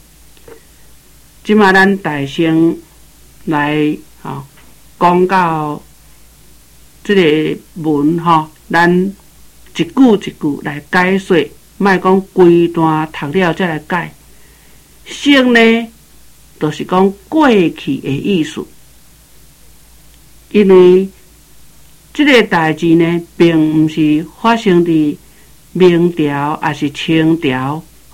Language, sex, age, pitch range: Chinese, male, 60-79, 155-195 Hz